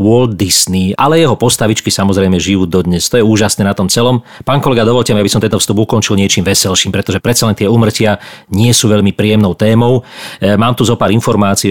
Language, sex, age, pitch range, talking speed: Slovak, male, 40-59, 100-125 Hz, 210 wpm